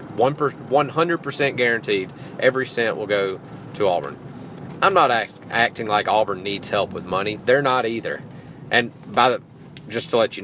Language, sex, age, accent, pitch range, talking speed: English, male, 40-59, American, 110-145 Hz, 160 wpm